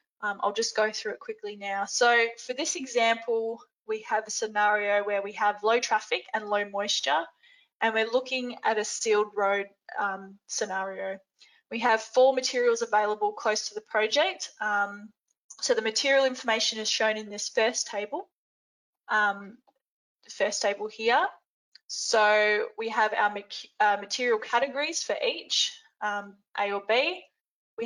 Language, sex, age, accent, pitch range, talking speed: English, female, 10-29, Australian, 210-280 Hz, 155 wpm